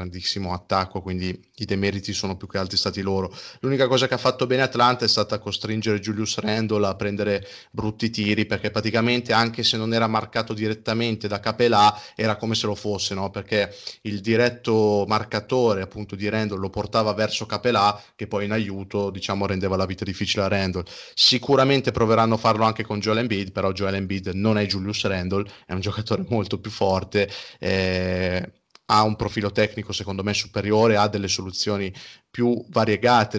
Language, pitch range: Italian, 100-115 Hz